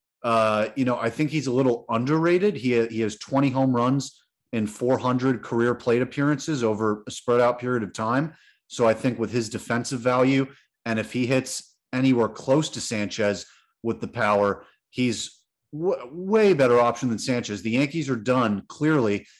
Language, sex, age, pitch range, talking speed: English, male, 30-49, 110-135 Hz, 175 wpm